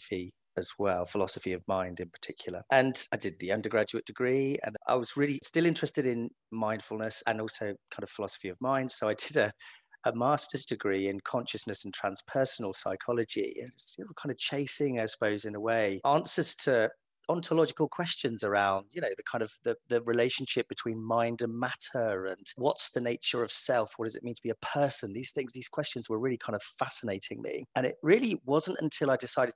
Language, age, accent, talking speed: English, 30-49, British, 200 wpm